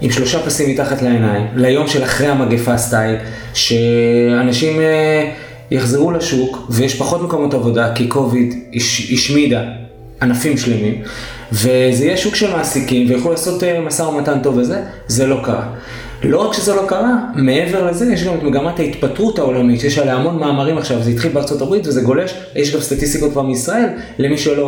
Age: 20-39